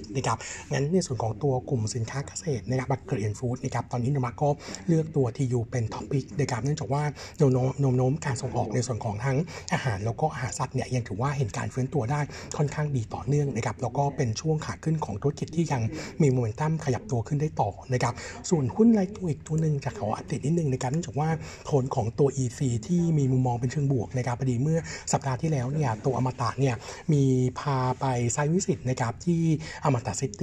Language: Thai